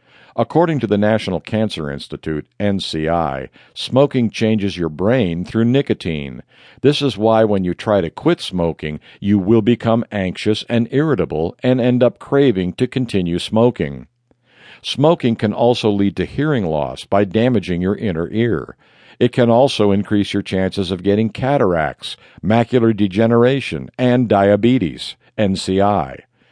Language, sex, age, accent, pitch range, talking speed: English, male, 50-69, American, 95-125 Hz, 140 wpm